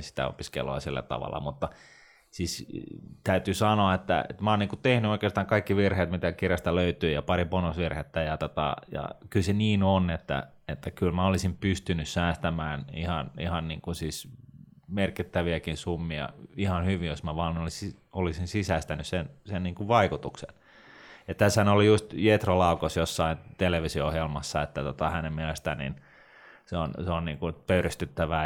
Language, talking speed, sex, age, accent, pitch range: Finnish, 155 wpm, male, 30-49, native, 80-95 Hz